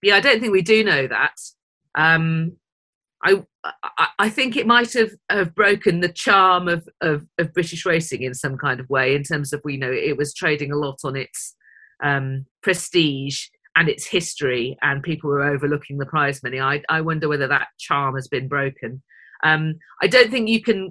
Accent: British